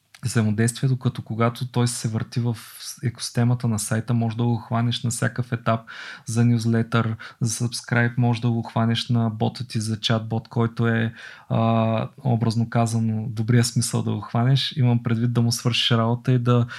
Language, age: Bulgarian, 20-39